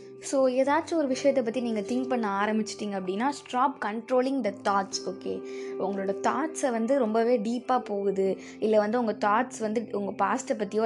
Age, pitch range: 20-39, 195-255 Hz